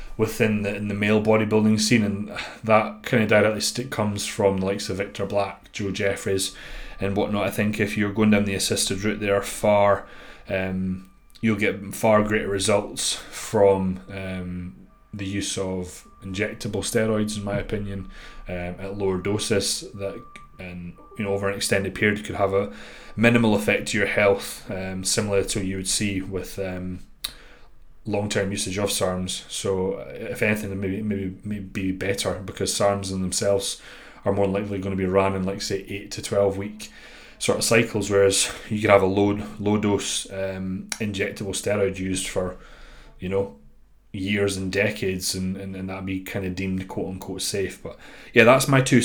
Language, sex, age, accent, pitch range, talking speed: English, male, 30-49, British, 95-105 Hz, 180 wpm